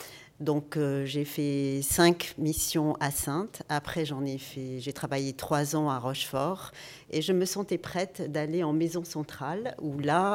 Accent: French